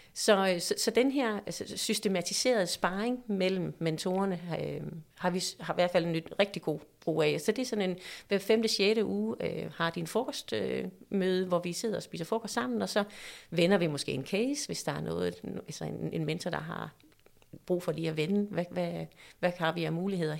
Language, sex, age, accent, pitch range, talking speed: Danish, female, 30-49, native, 165-215 Hz, 210 wpm